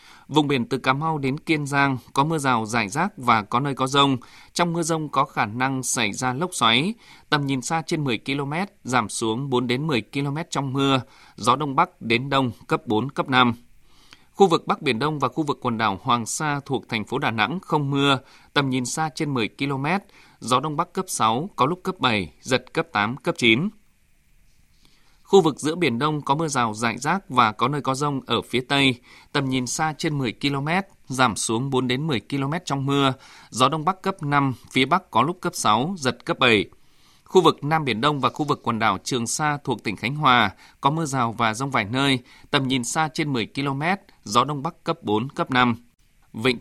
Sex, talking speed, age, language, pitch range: male, 225 wpm, 20-39, Vietnamese, 120-155 Hz